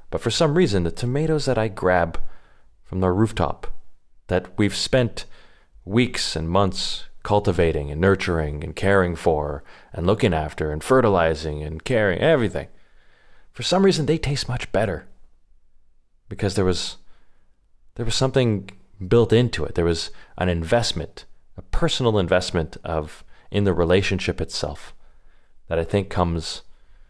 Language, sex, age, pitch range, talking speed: English, male, 30-49, 85-110 Hz, 140 wpm